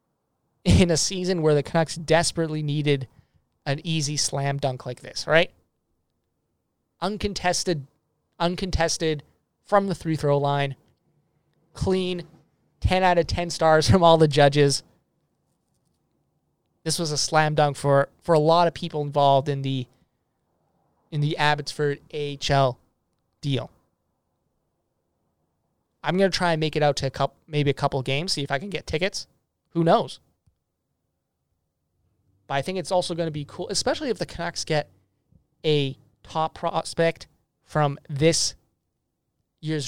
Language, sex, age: English, male, 20-39